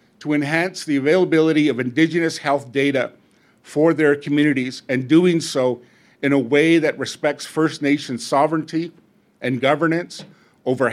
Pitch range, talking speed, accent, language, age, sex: 135-165 Hz, 135 wpm, American, English, 50-69, male